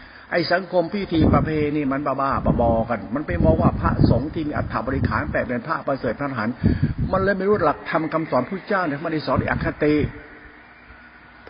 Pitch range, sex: 120-155 Hz, male